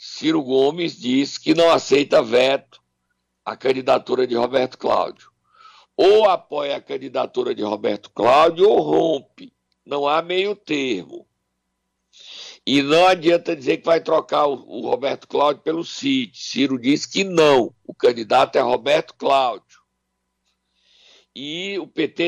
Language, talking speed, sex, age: Portuguese, 135 wpm, male, 60-79